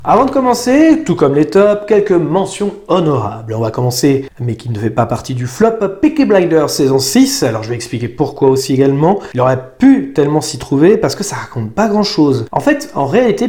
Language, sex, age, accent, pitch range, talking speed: French, male, 40-59, French, 125-180 Hz, 215 wpm